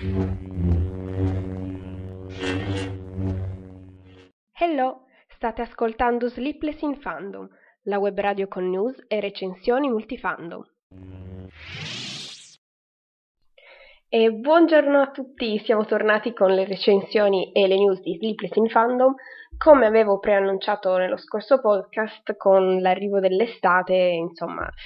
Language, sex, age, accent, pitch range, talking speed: Italian, female, 20-39, native, 180-220 Hz, 95 wpm